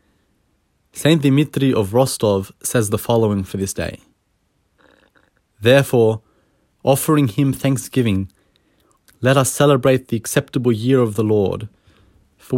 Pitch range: 105-130 Hz